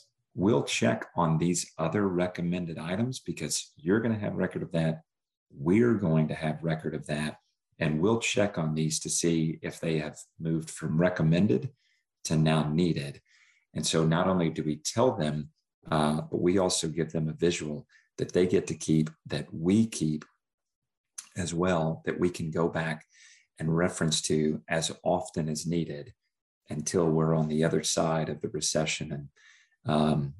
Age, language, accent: 40-59, English, American